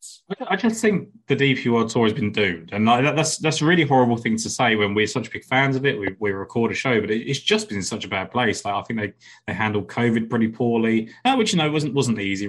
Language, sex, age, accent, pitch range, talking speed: English, male, 20-39, British, 105-130 Hz, 265 wpm